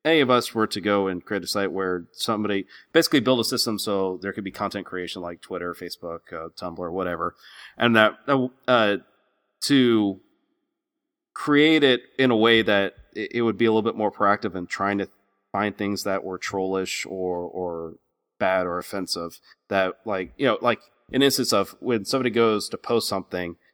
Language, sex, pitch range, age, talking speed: English, male, 95-115 Hz, 30-49, 185 wpm